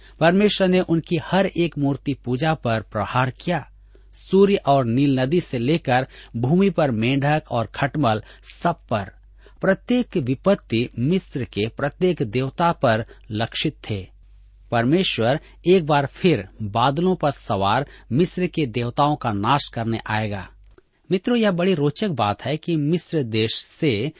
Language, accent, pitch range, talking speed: Hindi, native, 120-165 Hz, 140 wpm